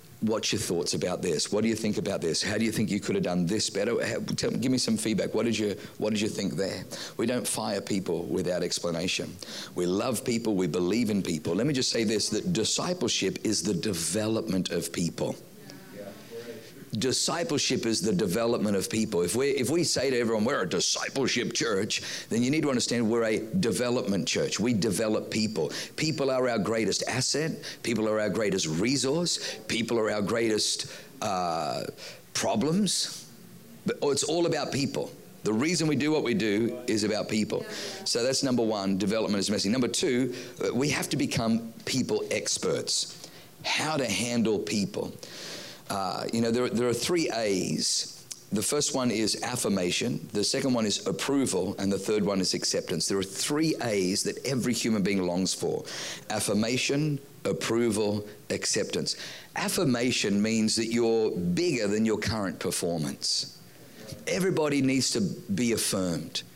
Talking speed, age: 175 wpm, 50-69